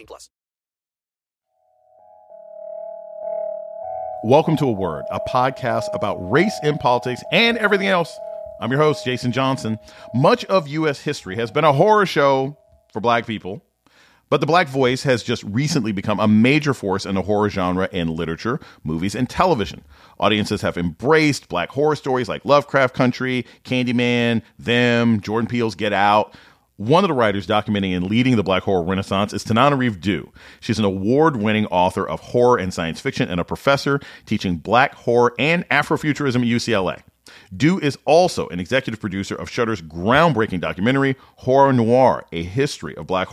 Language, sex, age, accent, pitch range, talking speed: English, male, 40-59, American, 105-140 Hz, 160 wpm